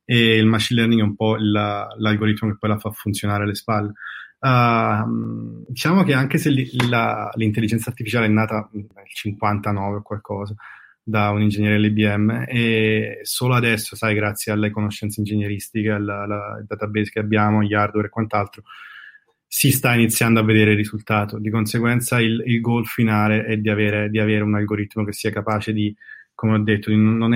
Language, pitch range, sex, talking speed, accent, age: Italian, 105-115 Hz, male, 160 wpm, native, 20-39